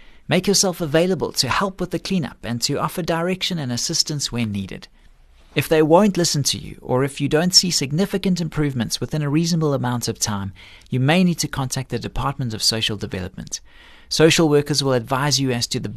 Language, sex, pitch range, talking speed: English, male, 120-170 Hz, 200 wpm